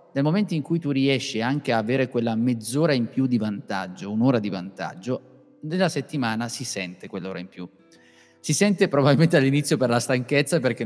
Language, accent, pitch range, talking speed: Italian, native, 115-155 Hz, 180 wpm